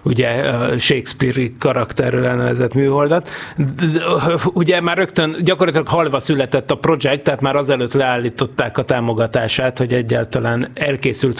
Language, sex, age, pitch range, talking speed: Hungarian, male, 30-49, 130-155 Hz, 110 wpm